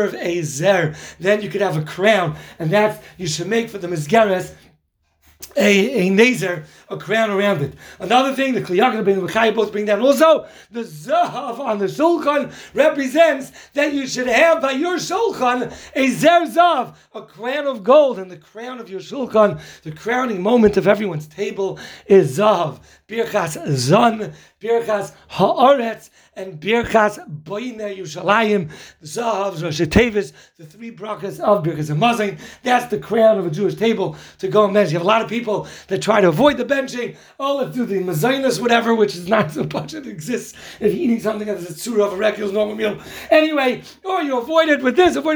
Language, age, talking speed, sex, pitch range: English, 40-59, 190 wpm, male, 195-255 Hz